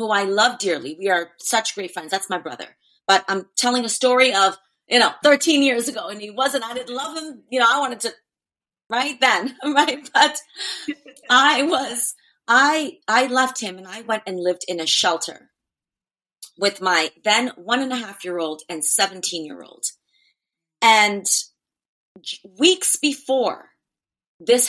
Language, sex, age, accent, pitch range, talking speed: English, female, 30-49, American, 190-260 Hz, 170 wpm